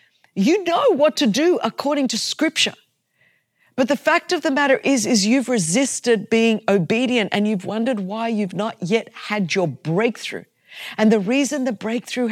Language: English